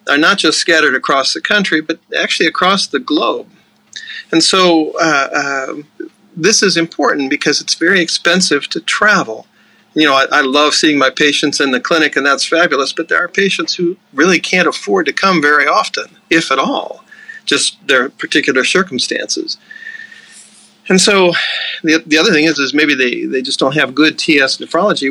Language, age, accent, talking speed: English, 40-59, American, 180 wpm